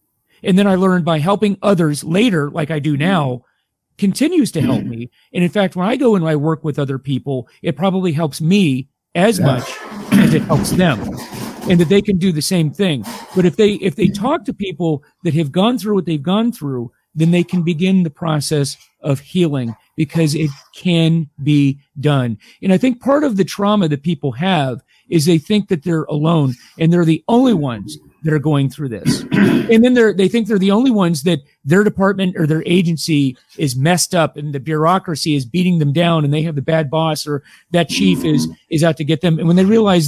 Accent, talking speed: American, 215 wpm